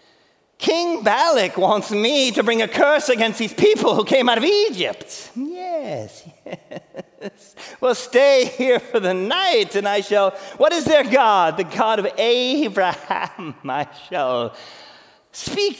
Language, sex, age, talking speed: English, male, 40-59, 145 wpm